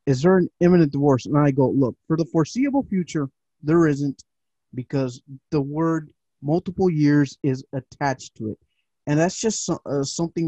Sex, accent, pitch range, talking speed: male, American, 135-170 Hz, 170 wpm